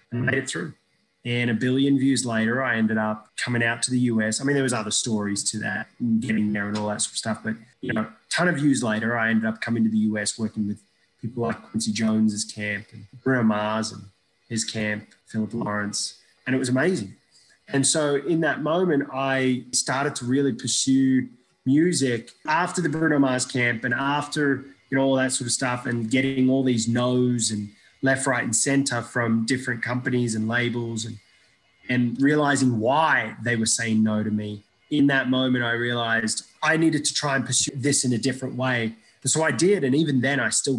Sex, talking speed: male, 205 wpm